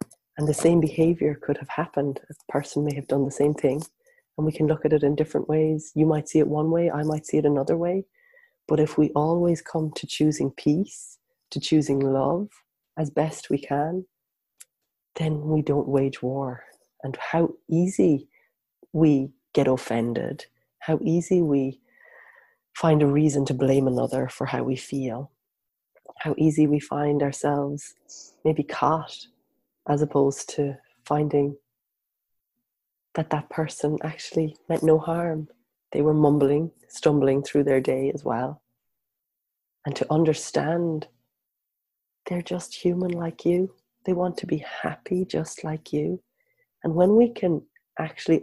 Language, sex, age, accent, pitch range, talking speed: English, female, 30-49, Irish, 140-165 Hz, 150 wpm